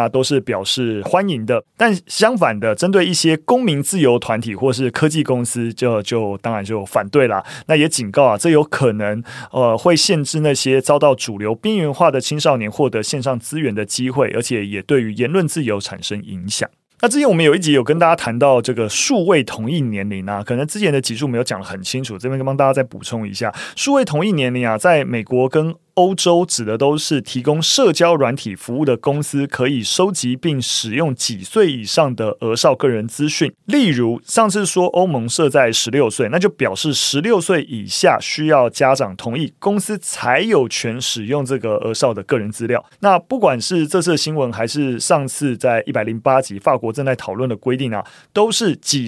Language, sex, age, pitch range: Chinese, male, 30-49, 115-160 Hz